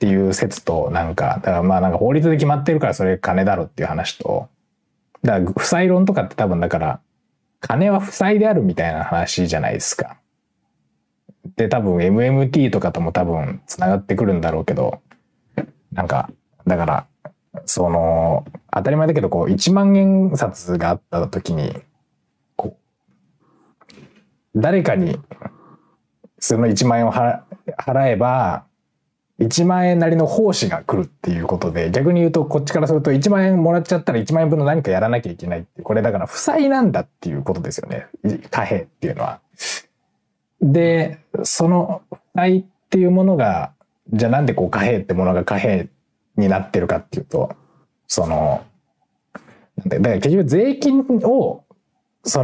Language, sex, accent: Japanese, male, native